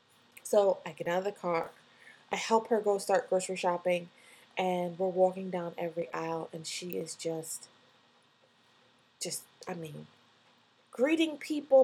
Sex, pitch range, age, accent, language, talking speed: female, 180-265 Hz, 20-39, American, English, 145 wpm